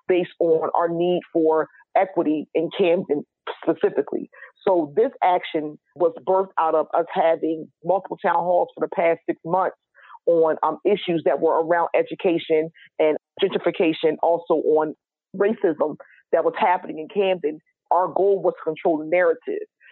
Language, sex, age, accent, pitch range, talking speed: English, female, 40-59, American, 165-195 Hz, 150 wpm